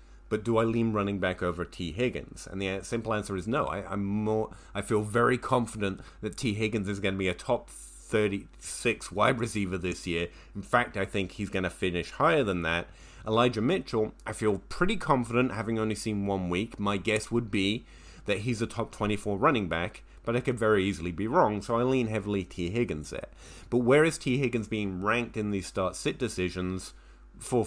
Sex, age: male, 30-49